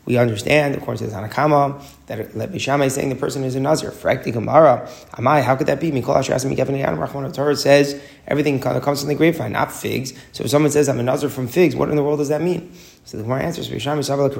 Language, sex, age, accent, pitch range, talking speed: English, male, 30-49, American, 125-150 Hz, 260 wpm